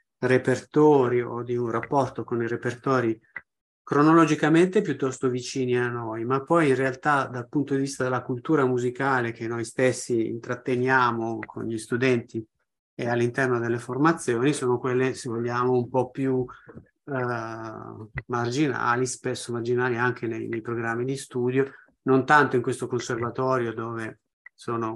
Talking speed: 140 wpm